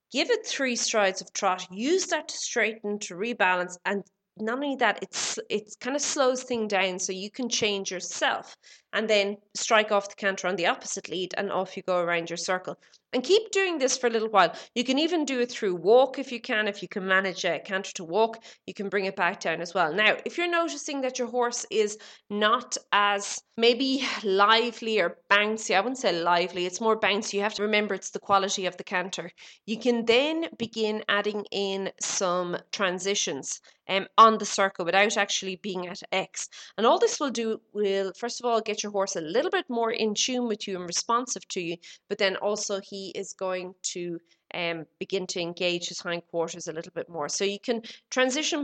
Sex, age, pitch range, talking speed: female, 30-49, 195-235 Hz, 210 wpm